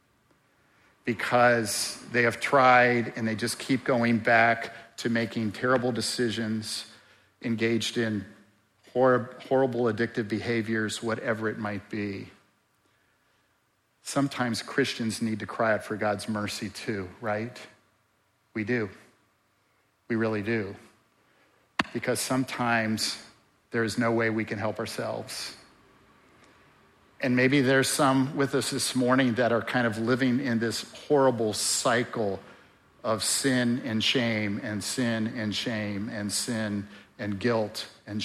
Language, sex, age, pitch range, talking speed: English, male, 50-69, 105-125 Hz, 125 wpm